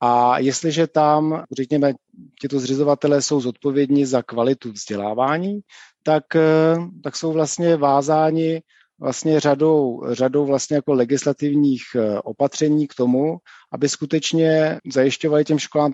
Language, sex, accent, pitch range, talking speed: Czech, male, native, 130-150 Hz, 115 wpm